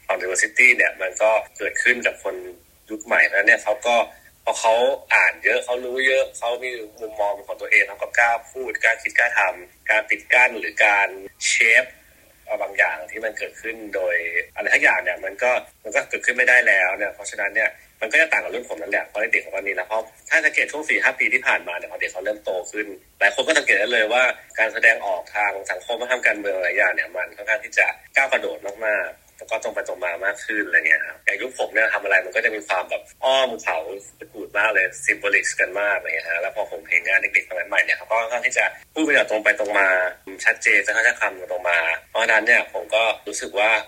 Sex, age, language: male, 30-49, Thai